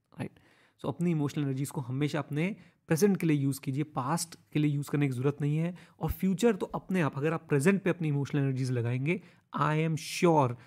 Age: 30-49